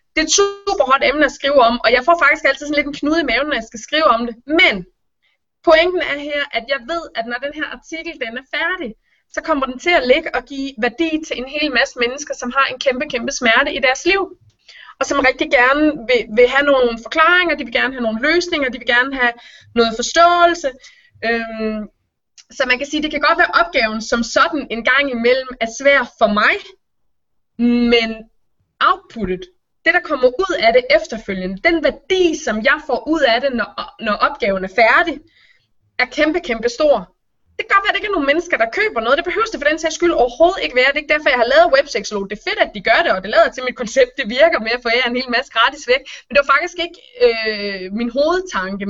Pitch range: 235-320 Hz